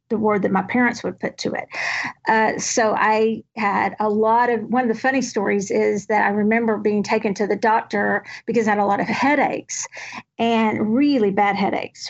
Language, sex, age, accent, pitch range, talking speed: English, female, 50-69, American, 215-250 Hz, 205 wpm